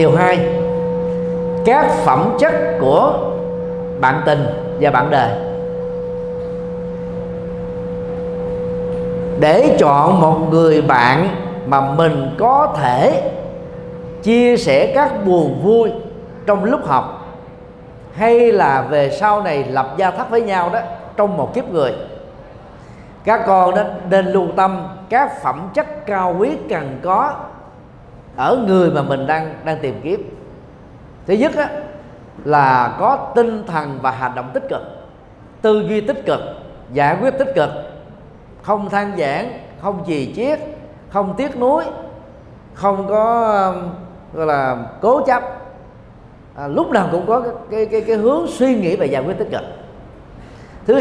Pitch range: 160-220 Hz